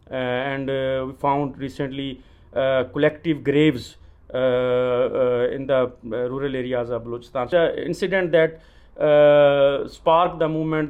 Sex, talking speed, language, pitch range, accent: male, 140 wpm, English, 120-145 Hz, Indian